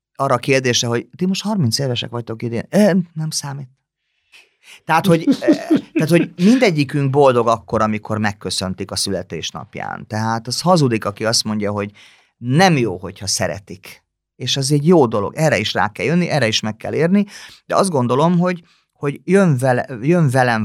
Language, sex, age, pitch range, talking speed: Hungarian, male, 30-49, 115-155 Hz, 170 wpm